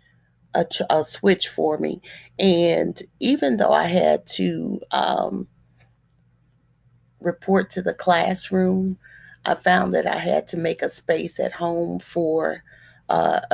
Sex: female